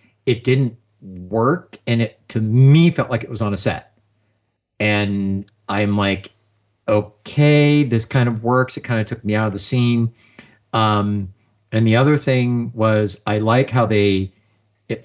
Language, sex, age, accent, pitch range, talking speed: English, male, 50-69, American, 105-120 Hz, 170 wpm